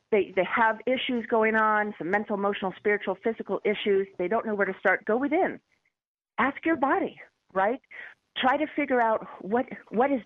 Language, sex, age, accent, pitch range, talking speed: English, female, 40-59, American, 175-230 Hz, 180 wpm